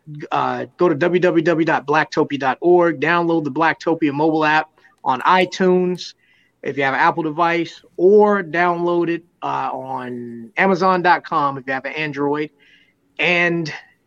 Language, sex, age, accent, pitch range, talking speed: English, male, 30-49, American, 140-175 Hz, 125 wpm